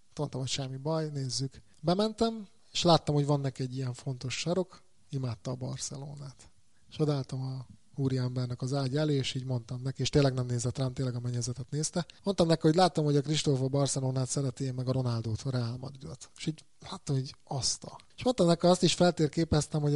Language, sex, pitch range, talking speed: Hungarian, male, 130-150 Hz, 185 wpm